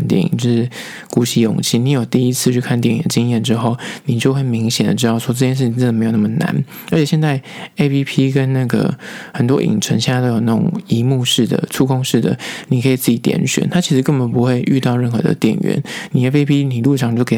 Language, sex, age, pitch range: Chinese, male, 20-39, 120-150 Hz